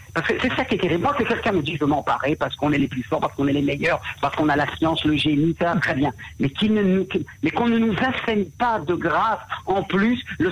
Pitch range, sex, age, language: 160-220 Hz, male, 50-69, French